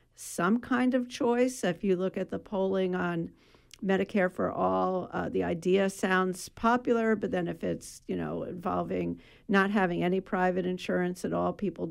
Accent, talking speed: American, 170 wpm